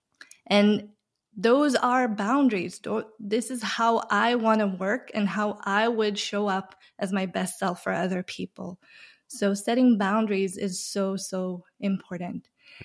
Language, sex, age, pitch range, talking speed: English, female, 20-39, 200-255 Hz, 145 wpm